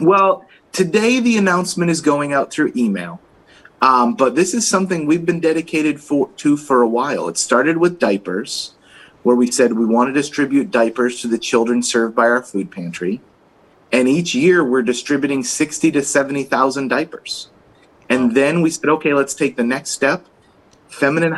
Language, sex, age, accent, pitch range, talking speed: English, male, 30-49, American, 125-165 Hz, 170 wpm